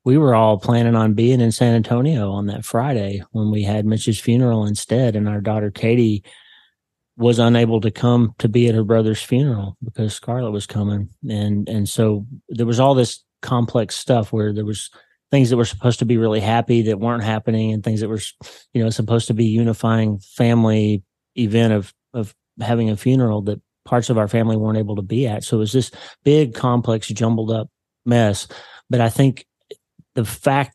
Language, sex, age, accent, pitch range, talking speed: English, male, 30-49, American, 105-120 Hz, 195 wpm